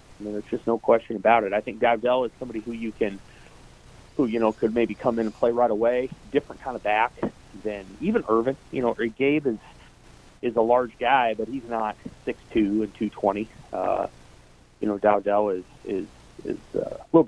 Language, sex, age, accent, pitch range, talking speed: English, male, 30-49, American, 105-120 Hz, 205 wpm